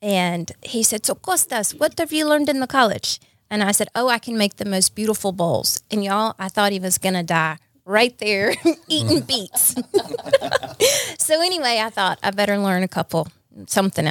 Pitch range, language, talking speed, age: 185-235 Hz, English, 195 wpm, 30-49